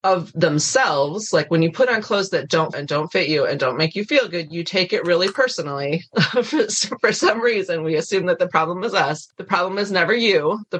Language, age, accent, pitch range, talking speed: English, 30-49, American, 155-195 Hz, 230 wpm